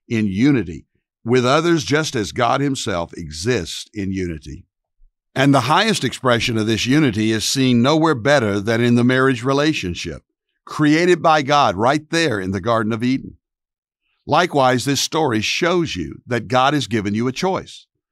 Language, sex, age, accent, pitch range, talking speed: English, male, 60-79, American, 105-140 Hz, 160 wpm